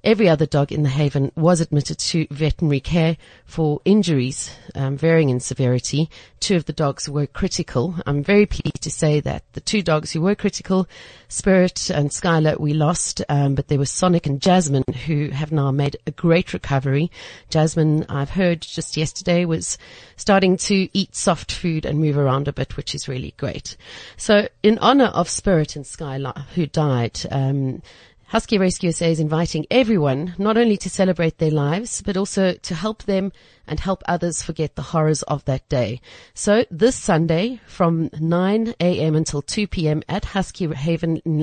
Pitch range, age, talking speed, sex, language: 145-190 Hz, 40-59, 180 wpm, female, English